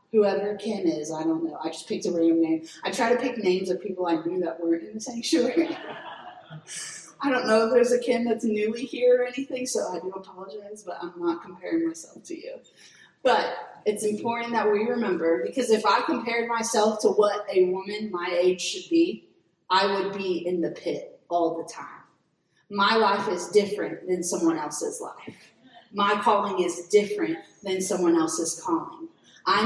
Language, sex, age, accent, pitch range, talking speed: English, female, 30-49, American, 185-255 Hz, 190 wpm